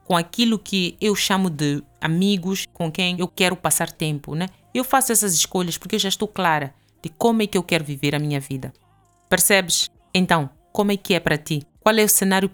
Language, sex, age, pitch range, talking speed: Portuguese, female, 20-39, 145-195 Hz, 215 wpm